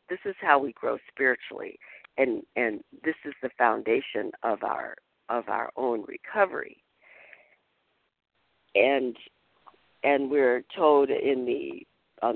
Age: 50-69